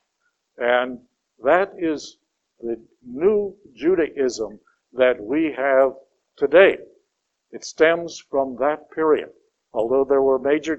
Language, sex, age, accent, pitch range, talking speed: English, male, 60-79, American, 130-170 Hz, 105 wpm